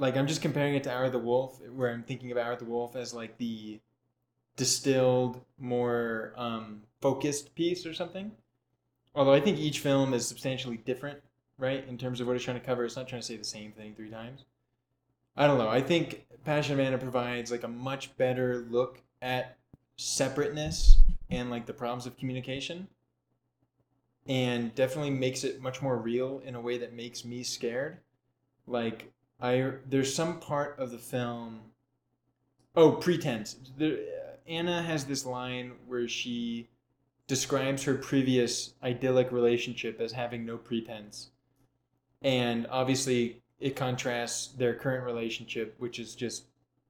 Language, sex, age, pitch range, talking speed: English, male, 20-39, 120-135 Hz, 165 wpm